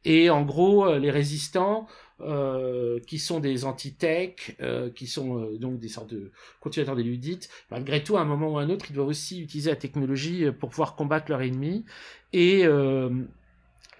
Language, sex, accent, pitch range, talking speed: French, male, French, 145-175 Hz, 185 wpm